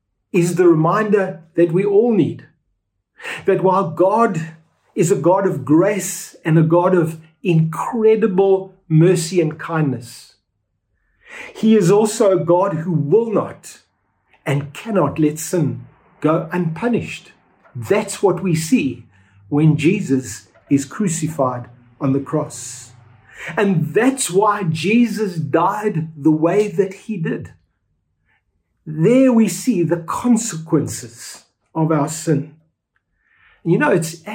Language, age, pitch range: English, 50-69, 145-195 Hz